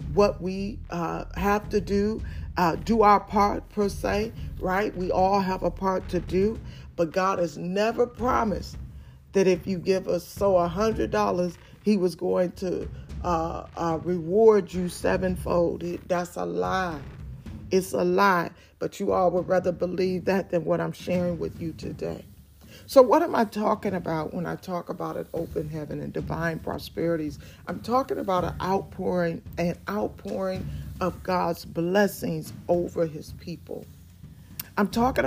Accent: American